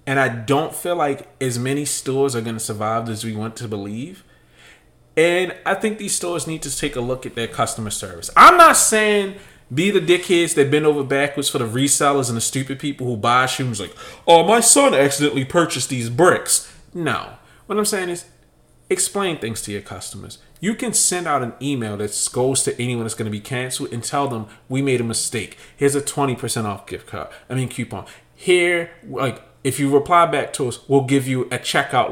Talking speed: 210 wpm